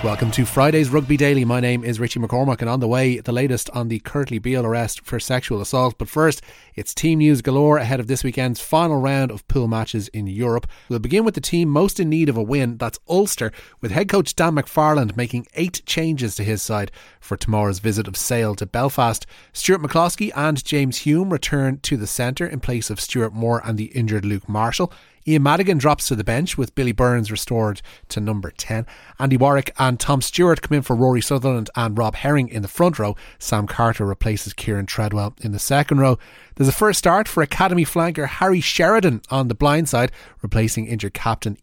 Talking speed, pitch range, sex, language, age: 210 wpm, 115-145 Hz, male, English, 30-49